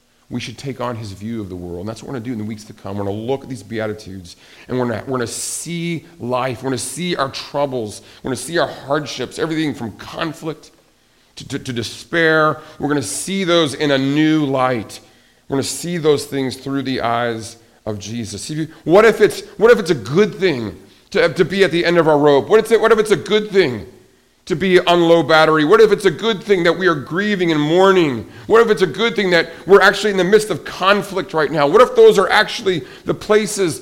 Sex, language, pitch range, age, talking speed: male, English, 115-180 Hz, 40-59, 250 wpm